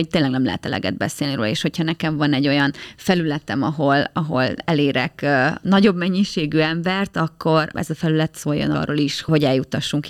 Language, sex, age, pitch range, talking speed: Hungarian, female, 30-49, 150-175 Hz, 170 wpm